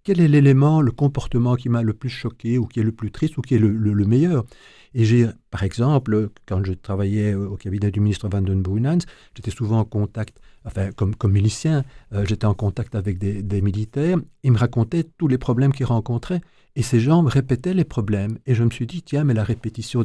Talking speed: 220 wpm